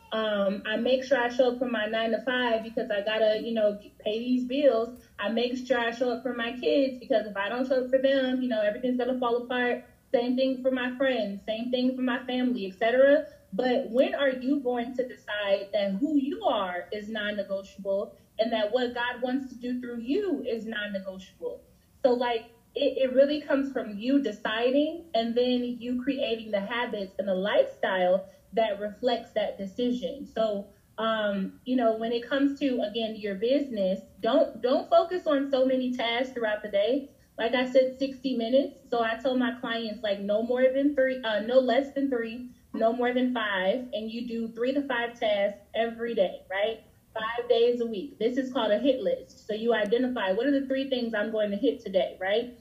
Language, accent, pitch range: English, American, 220-260 Hz